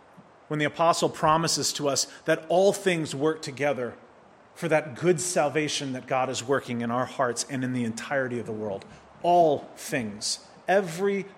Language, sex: English, male